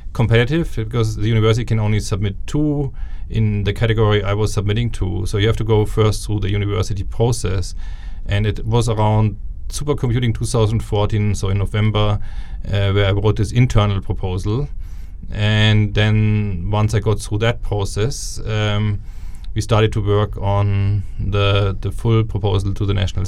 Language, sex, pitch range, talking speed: English, male, 95-110 Hz, 160 wpm